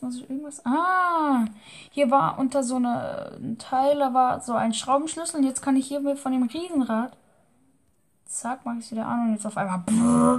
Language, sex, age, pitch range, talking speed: German, female, 10-29, 220-260 Hz, 210 wpm